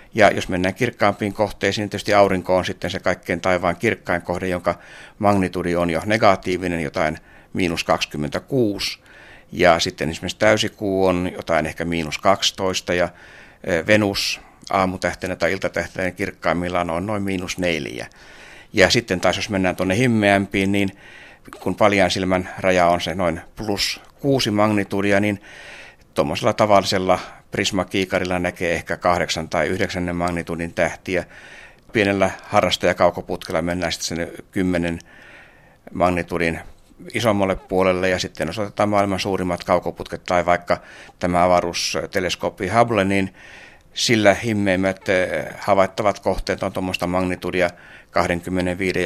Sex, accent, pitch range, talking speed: male, native, 85-100 Hz, 120 wpm